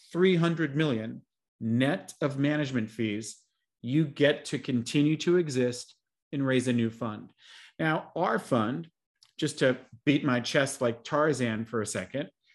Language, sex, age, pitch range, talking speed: English, male, 40-59, 120-150 Hz, 145 wpm